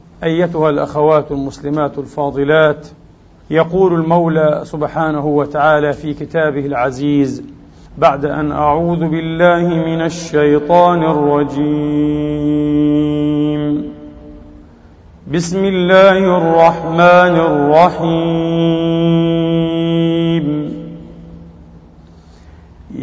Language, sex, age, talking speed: English, male, 50-69, 55 wpm